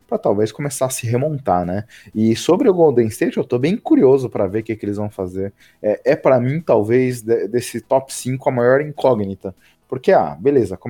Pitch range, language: 105-135 Hz, Portuguese